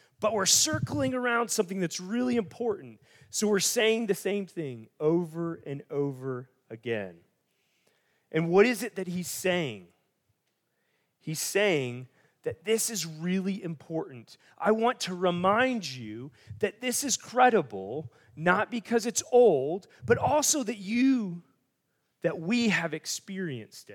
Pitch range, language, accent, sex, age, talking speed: 150-220 Hz, English, American, male, 30-49, 135 wpm